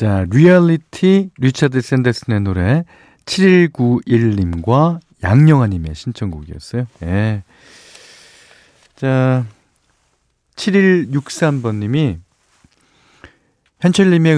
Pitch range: 95-145 Hz